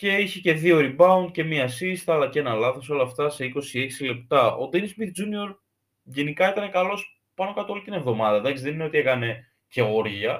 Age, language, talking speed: 20-39, Greek, 200 wpm